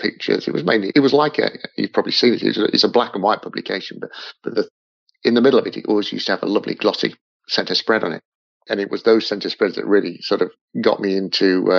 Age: 50-69